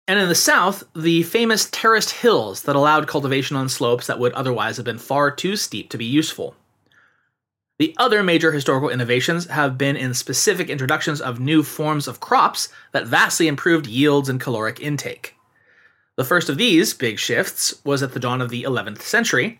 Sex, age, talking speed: male, 30-49, 185 wpm